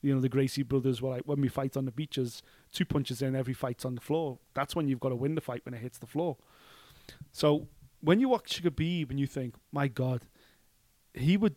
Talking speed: 240 wpm